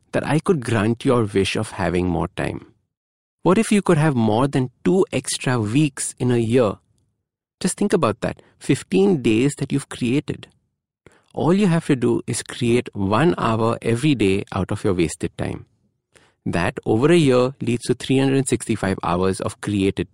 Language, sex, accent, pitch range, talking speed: English, male, Indian, 110-150 Hz, 175 wpm